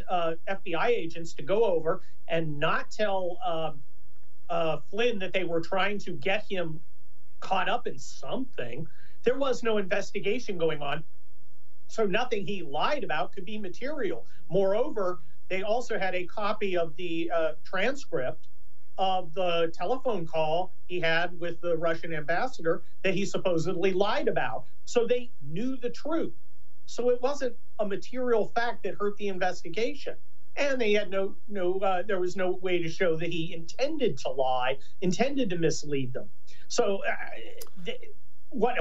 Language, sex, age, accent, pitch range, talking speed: English, male, 40-59, American, 165-210 Hz, 160 wpm